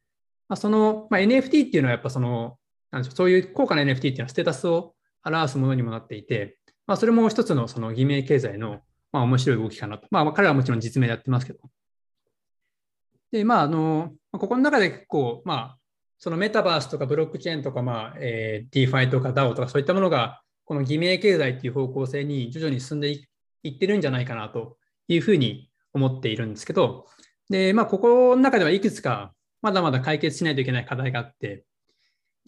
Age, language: 20-39, Japanese